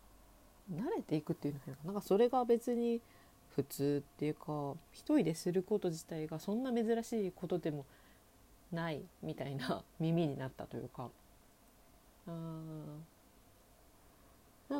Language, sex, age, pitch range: Japanese, female, 40-59, 150-195 Hz